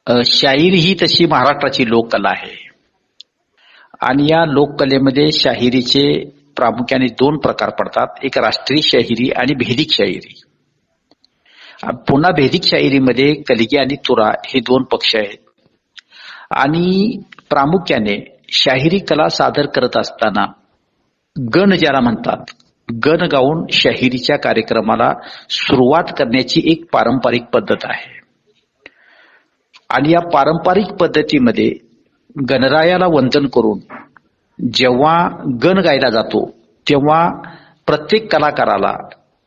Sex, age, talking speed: male, 60-79, 90 wpm